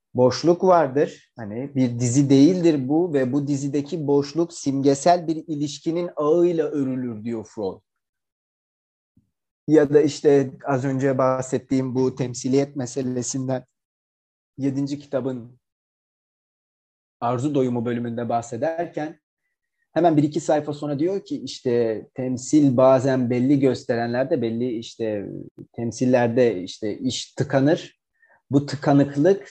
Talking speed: 110 wpm